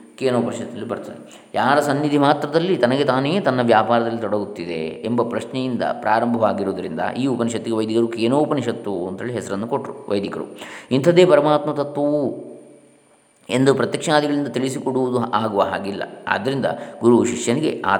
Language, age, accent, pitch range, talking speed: Kannada, 20-39, native, 115-130 Hz, 115 wpm